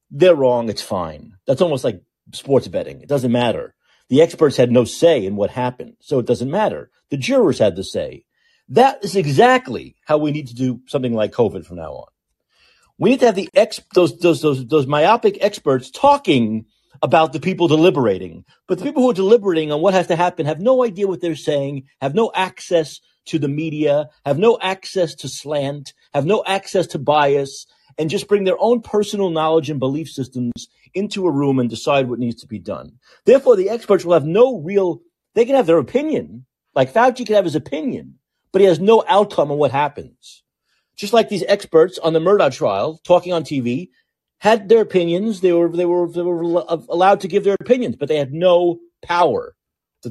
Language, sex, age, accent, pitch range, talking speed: English, male, 50-69, American, 140-200 Hz, 200 wpm